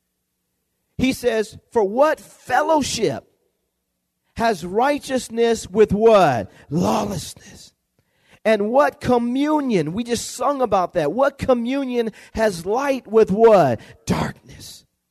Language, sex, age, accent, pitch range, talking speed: English, male, 40-59, American, 215-265 Hz, 100 wpm